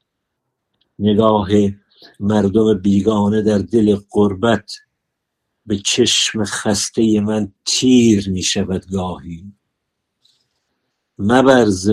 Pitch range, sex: 95-110 Hz, male